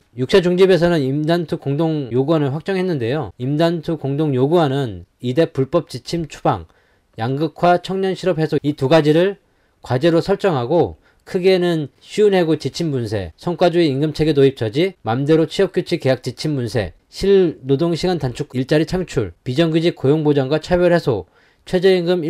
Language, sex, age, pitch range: Korean, male, 20-39, 130-175 Hz